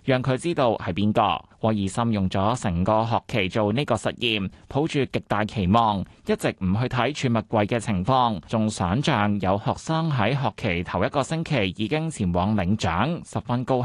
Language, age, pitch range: Chinese, 20-39, 105-140 Hz